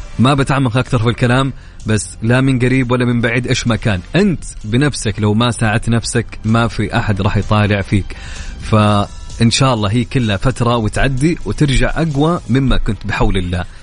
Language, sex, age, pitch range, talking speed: Arabic, male, 30-49, 110-185 Hz, 175 wpm